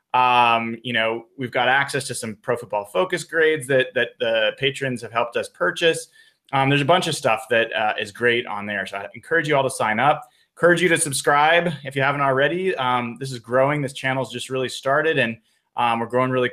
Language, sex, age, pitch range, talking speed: English, male, 20-39, 120-155 Hz, 225 wpm